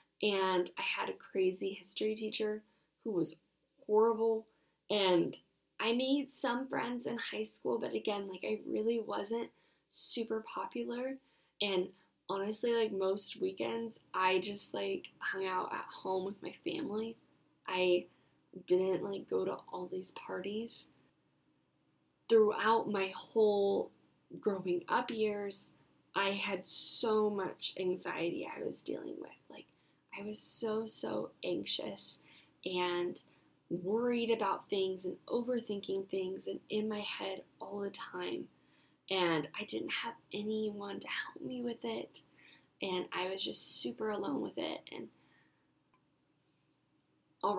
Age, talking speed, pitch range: 10-29, 130 wpm, 185-230 Hz